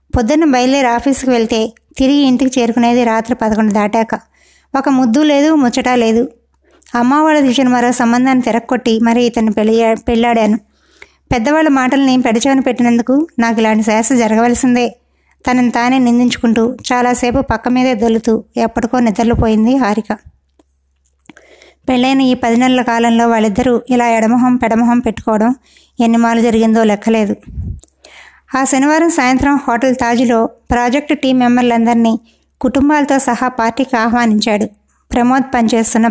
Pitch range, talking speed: 230-255 Hz, 120 wpm